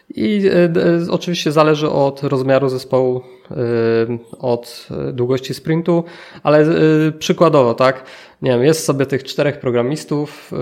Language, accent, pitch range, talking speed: Polish, native, 130-170 Hz, 105 wpm